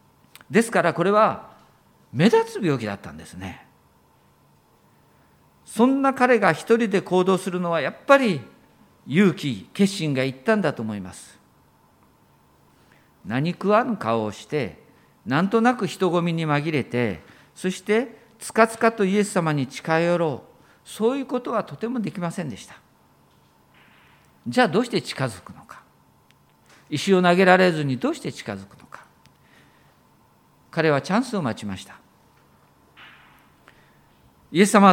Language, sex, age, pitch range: Japanese, male, 50-69, 155-215 Hz